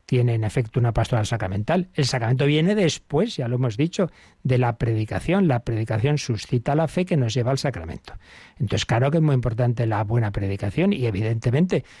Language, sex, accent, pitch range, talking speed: Spanish, male, Spanish, 115-140 Hz, 190 wpm